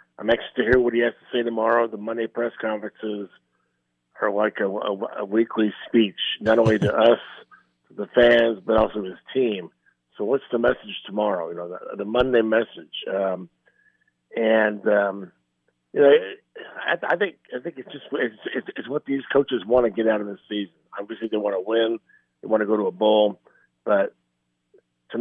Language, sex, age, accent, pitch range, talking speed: English, male, 50-69, American, 95-120 Hz, 195 wpm